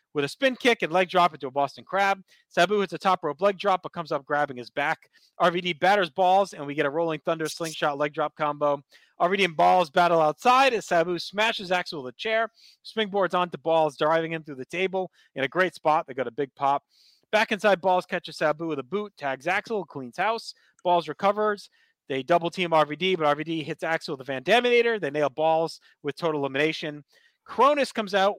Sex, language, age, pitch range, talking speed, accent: male, English, 30-49, 140-185 Hz, 210 wpm, American